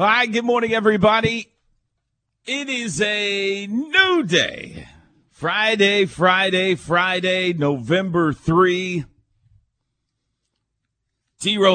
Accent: American